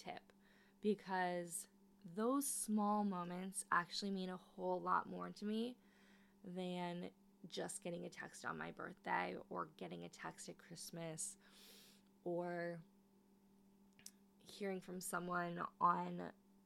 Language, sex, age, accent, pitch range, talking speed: English, female, 20-39, American, 185-205 Hz, 110 wpm